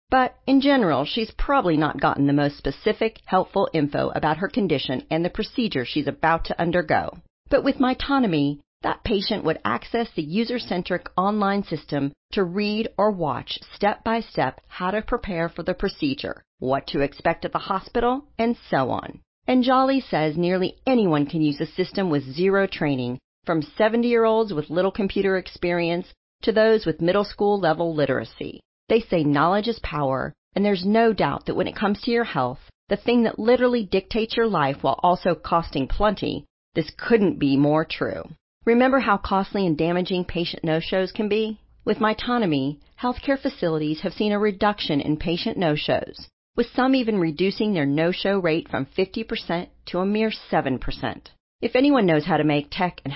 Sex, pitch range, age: female, 155-225 Hz, 40-59